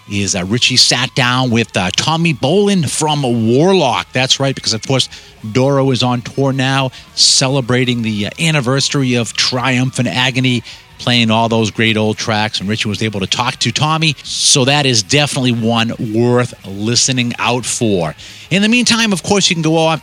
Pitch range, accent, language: 115-155 Hz, American, English